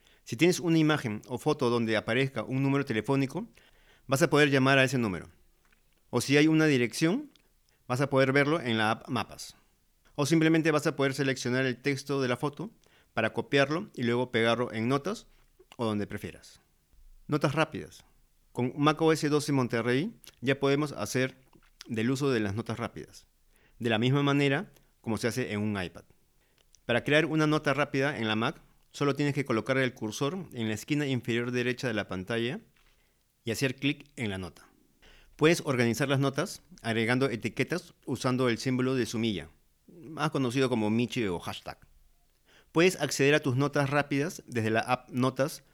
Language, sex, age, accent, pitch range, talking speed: Spanish, male, 40-59, Mexican, 115-145 Hz, 175 wpm